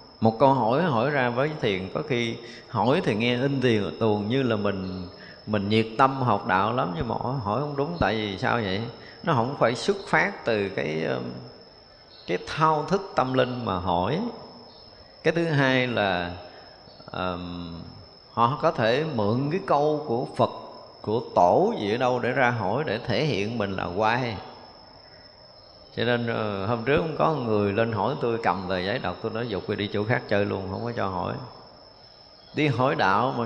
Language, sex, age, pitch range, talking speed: Vietnamese, male, 20-39, 100-130 Hz, 185 wpm